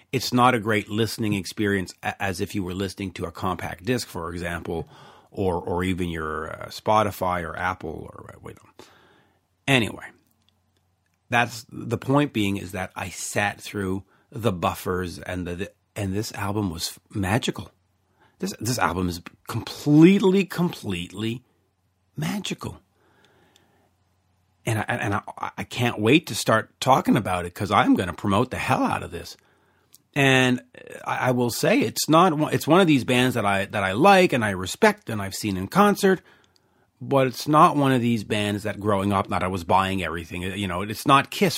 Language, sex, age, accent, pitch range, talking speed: English, male, 40-59, American, 95-125 Hz, 175 wpm